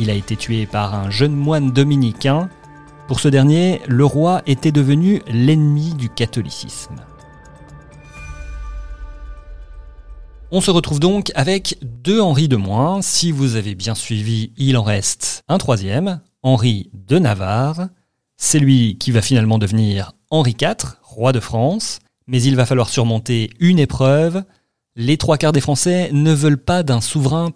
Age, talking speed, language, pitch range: 40-59, 150 wpm, French, 115-145 Hz